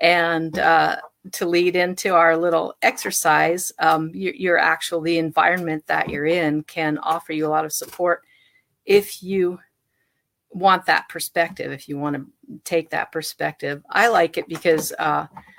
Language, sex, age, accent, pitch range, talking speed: English, female, 40-59, American, 155-180 Hz, 155 wpm